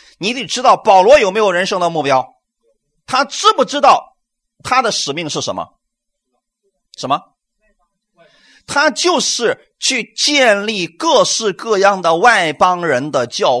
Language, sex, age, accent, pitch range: Chinese, male, 30-49, native, 160-250 Hz